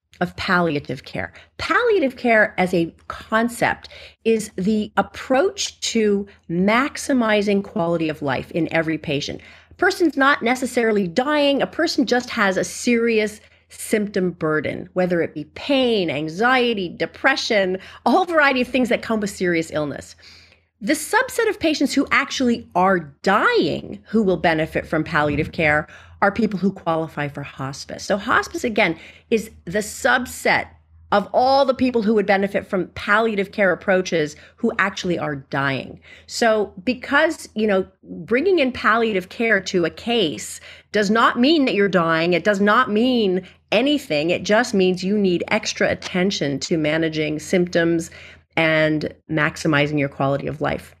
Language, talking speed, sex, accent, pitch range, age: English, 150 wpm, female, American, 160-235 Hz, 40-59